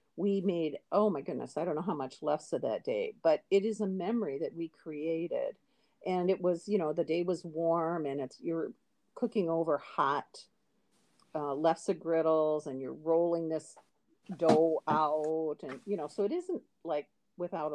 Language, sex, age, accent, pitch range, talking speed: English, female, 50-69, American, 155-195 Hz, 180 wpm